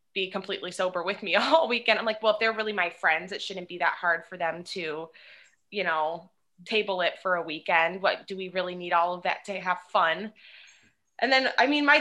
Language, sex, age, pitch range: English, female, 20-39, 185-235 Hz